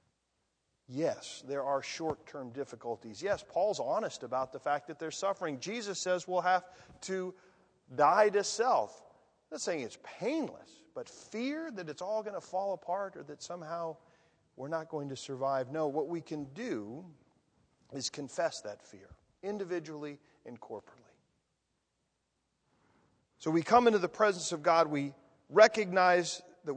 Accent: American